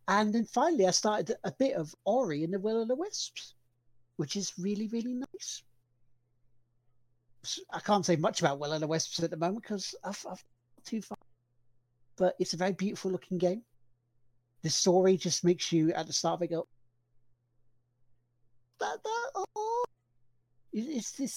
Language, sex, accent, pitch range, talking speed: English, male, British, 120-200 Hz, 160 wpm